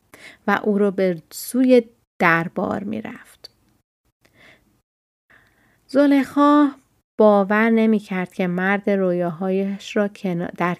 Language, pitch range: Persian, 185-225 Hz